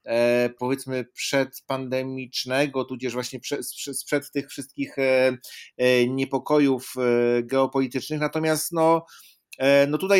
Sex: male